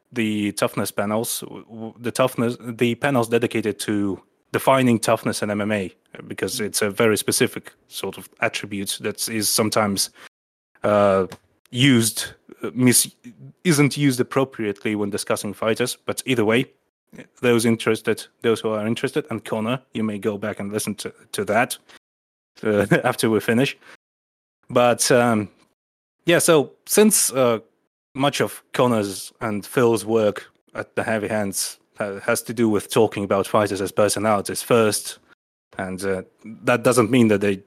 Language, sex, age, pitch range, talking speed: English, male, 30-49, 100-120 Hz, 145 wpm